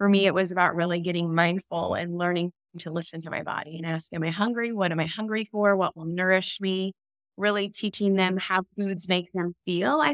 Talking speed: 225 wpm